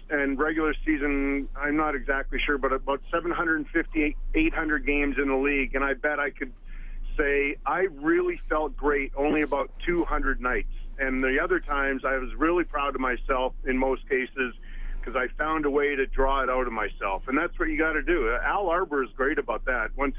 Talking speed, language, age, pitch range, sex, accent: 200 wpm, English, 40-59, 135-160 Hz, male, American